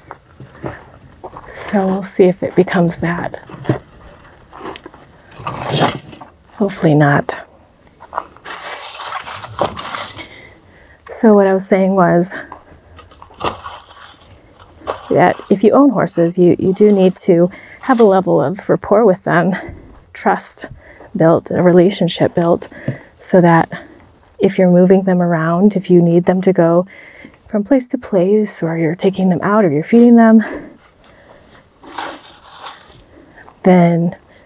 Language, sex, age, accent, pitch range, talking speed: English, female, 30-49, American, 170-205 Hz, 110 wpm